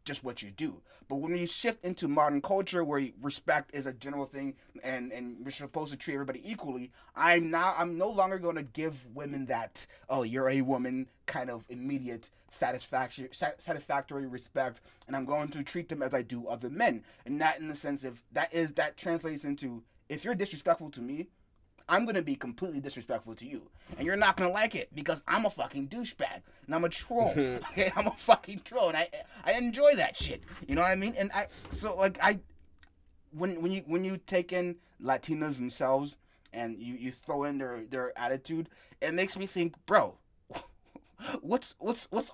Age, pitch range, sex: 30-49, 135-190 Hz, male